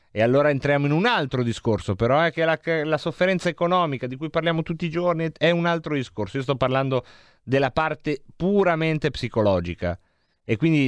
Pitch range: 110-150 Hz